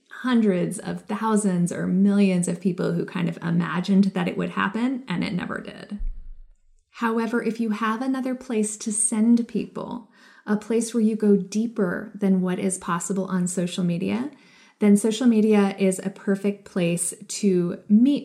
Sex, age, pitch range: female, 20-39, 190-225 Hz